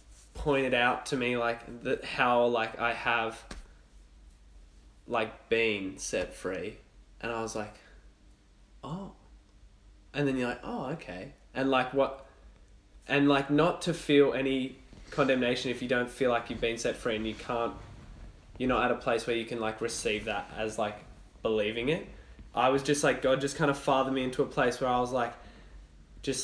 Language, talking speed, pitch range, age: English, 180 wpm, 110-130 Hz, 10-29